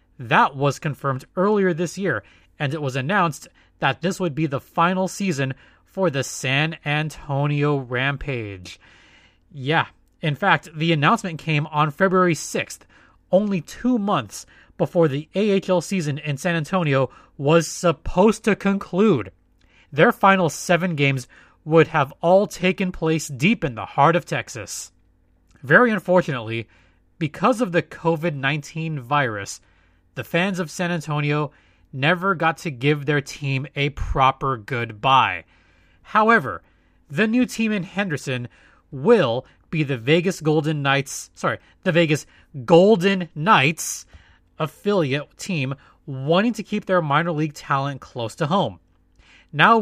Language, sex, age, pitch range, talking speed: English, male, 30-49, 135-180 Hz, 135 wpm